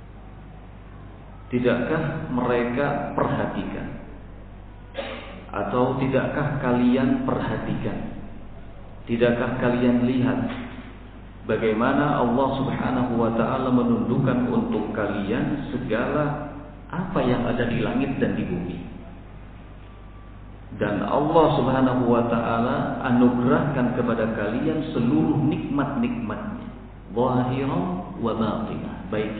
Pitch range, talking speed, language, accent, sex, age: 105-145 Hz, 80 wpm, Indonesian, native, male, 50-69